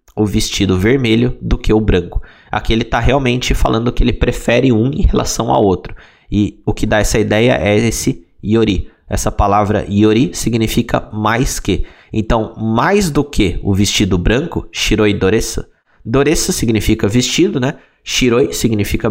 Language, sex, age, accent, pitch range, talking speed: Portuguese, male, 20-39, Brazilian, 100-125 Hz, 155 wpm